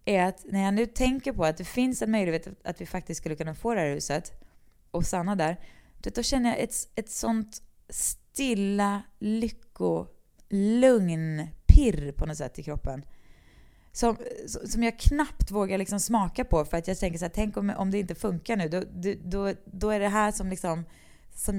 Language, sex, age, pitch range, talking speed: English, female, 20-39, 165-220 Hz, 195 wpm